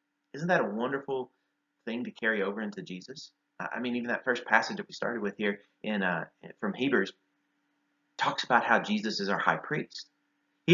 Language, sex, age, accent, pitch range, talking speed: English, male, 30-49, American, 120-165 Hz, 190 wpm